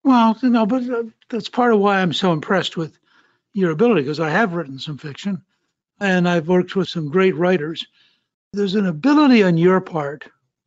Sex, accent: male, American